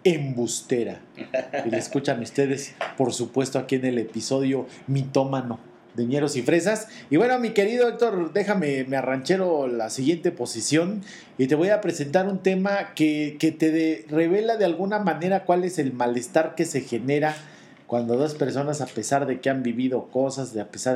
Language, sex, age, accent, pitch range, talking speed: Spanish, male, 40-59, Mexican, 125-160 Hz, 180 wpm